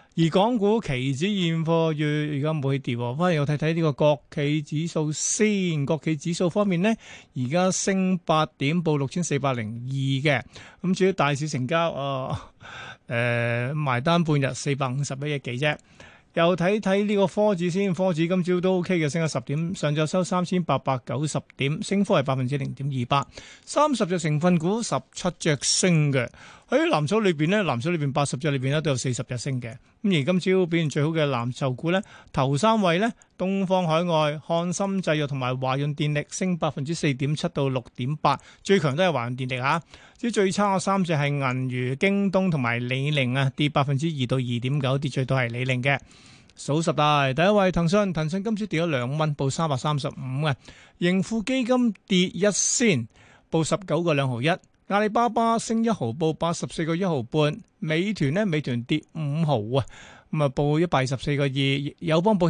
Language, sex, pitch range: Chinese, male, 140-180 Hz